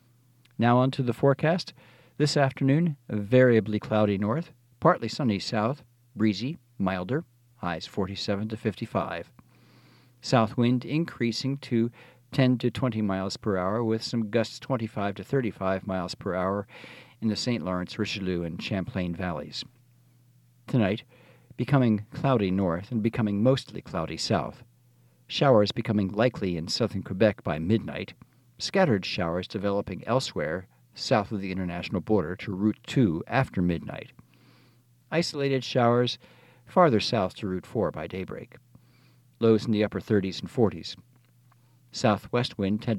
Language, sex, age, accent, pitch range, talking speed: English, male, 50-69, American, 100-125 Hz, 135 wpm